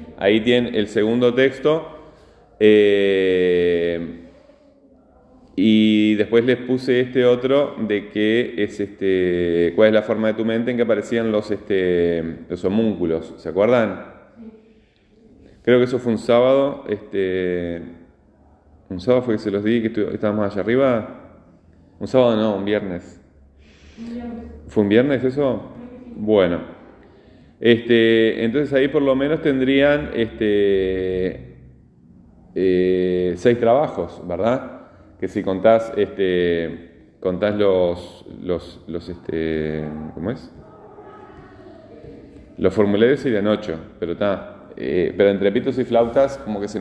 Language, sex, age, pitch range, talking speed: Spanish, male, 30-49, 90-125 Hz, 115 wpm